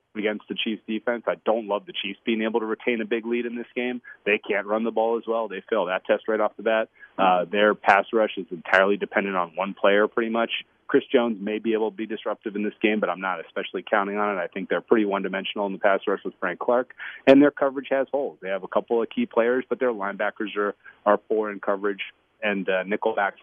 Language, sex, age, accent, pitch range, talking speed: English, male, 30-49, American, 100-120 Hz, 255 wpm